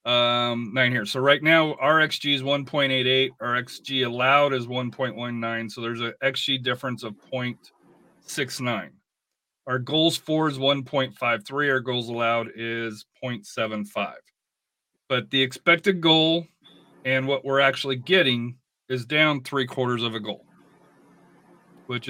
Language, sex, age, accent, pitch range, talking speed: English, male, 40-59, American, 115-140 Hz, 135 wpm